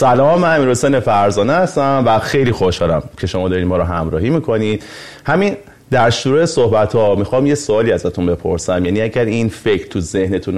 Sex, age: male, 30-49